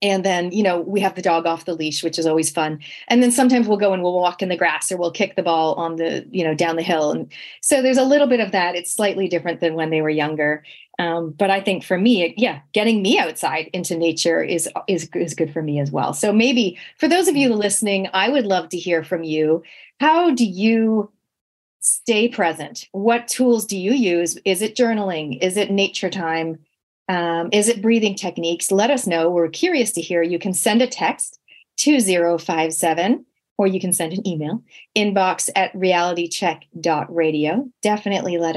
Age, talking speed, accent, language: 30-49, 210 wpm, American, English